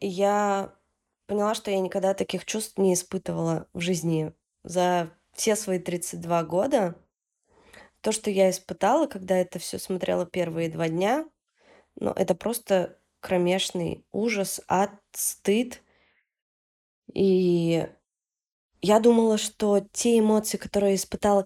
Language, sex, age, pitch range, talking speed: Russian, female, 20-39, 175-205 Hz, 115 wpm